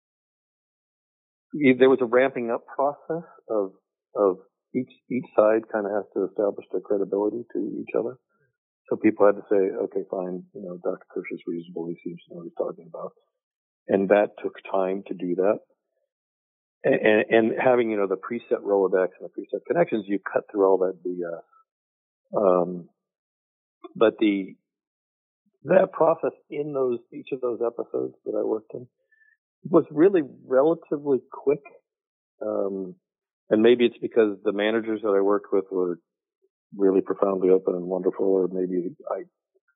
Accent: American